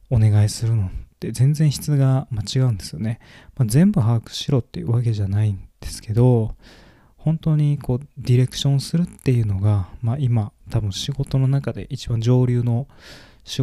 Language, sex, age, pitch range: Japanese, male, 20-39, 100-130 Hz